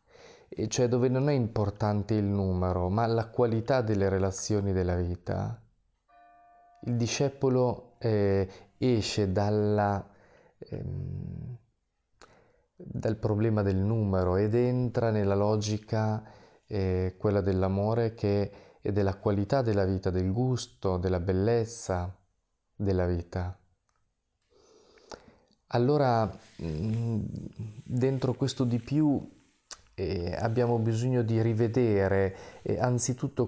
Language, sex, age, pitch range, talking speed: Italian, male, 30-49, 100-120 Hz, 100 wpm